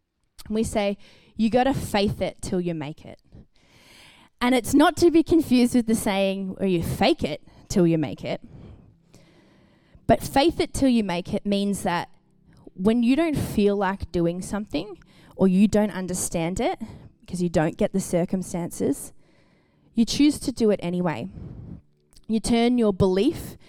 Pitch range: 180-230 Hz